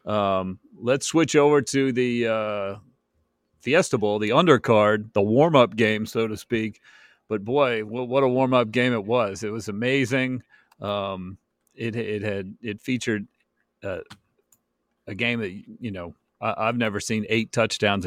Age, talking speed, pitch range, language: 40-59, 155 wpm, 105-130 Hz, English